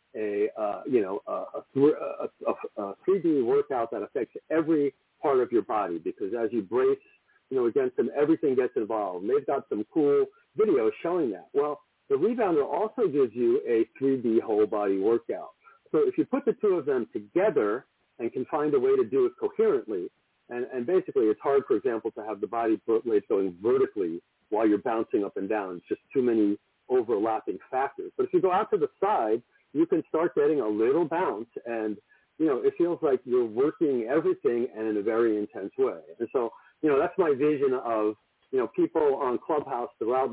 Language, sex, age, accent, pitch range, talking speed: English, male, 50-69, American, 345-415 Hz, 200 wpm